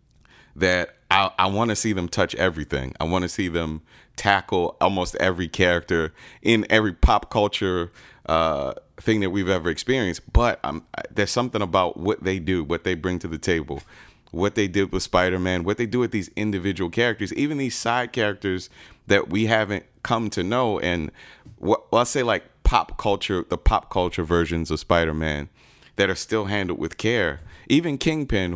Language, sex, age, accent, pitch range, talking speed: English, male, 30-49, American, 85-105 Hz, 180 wpm